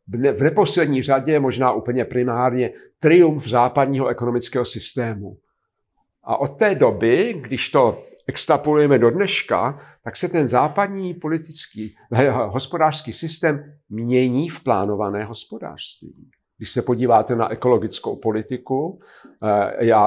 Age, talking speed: 50-69, 115 wpm